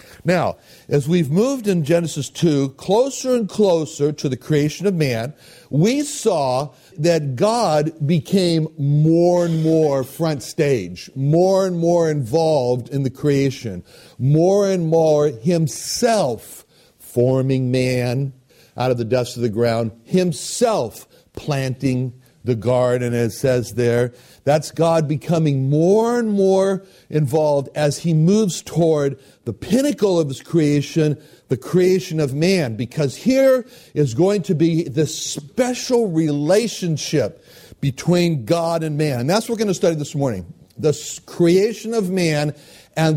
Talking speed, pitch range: 140 wpm, 135-175 Hz